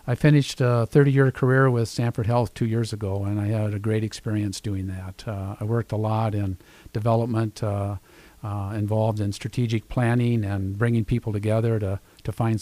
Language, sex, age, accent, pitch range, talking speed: English, male, 50-69, American, 105-120 Hz, 185 wpm